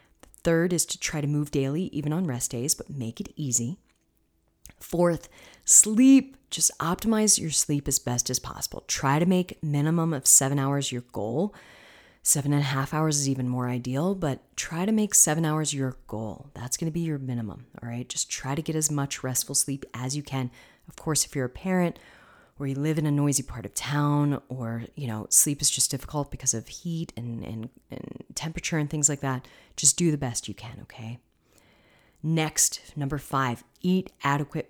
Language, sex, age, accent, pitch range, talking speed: English, female, 30-49, American, 125-155 Hz, 200 wpm